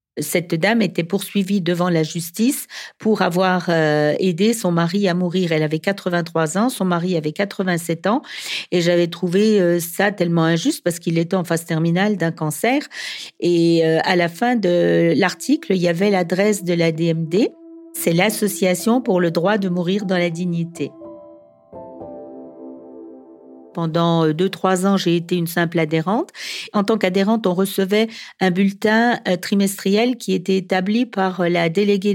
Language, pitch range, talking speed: French, 170-210 Hz, 155 wpm